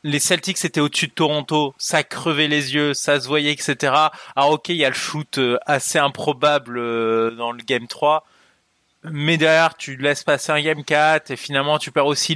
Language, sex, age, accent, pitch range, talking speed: French, male, 20-39, French, 130-165 Hz, 195 wpm